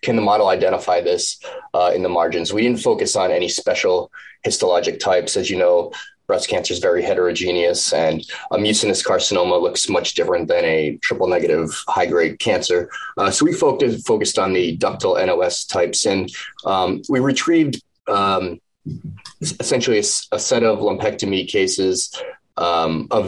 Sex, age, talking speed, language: male, 30-49, 155 wpm, English